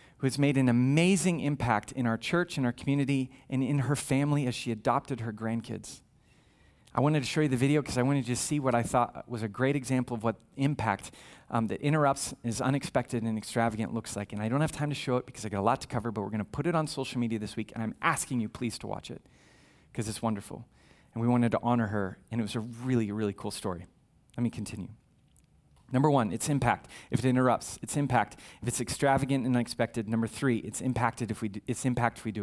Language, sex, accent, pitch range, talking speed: English, male, American, 115-160 Hz, 235 wpm